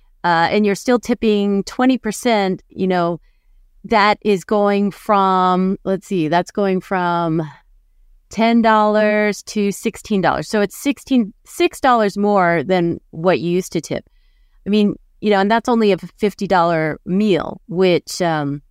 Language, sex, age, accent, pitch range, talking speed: English, female, 30-49, American, 170-215 Hz, 135 wpm